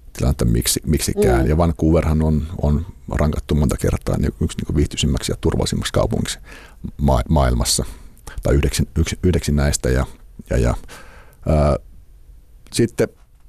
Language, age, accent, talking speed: Finnish, 50-69, native, 105 wpm